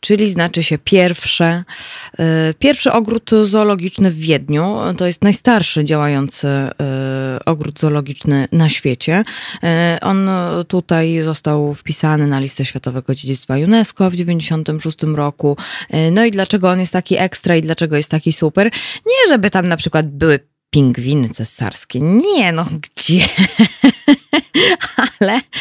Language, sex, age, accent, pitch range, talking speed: Polish, female, 20-39, native, 150-195 Hz, 120 wpm